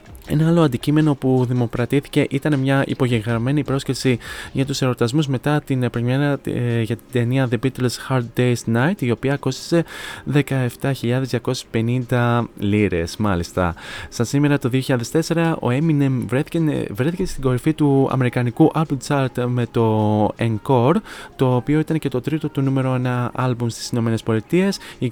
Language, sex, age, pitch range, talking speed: Greek, male, 20-39, 115-140 Hz, 145 wpm